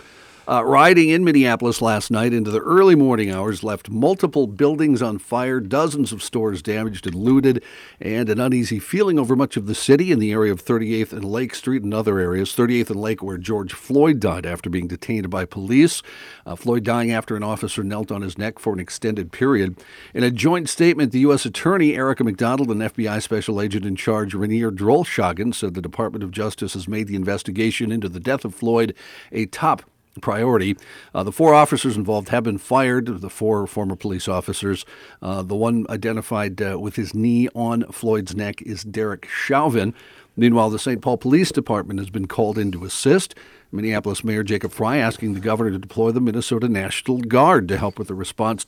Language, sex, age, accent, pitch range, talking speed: English, male, 50-69, American, 100-125 Hz, 195 wpm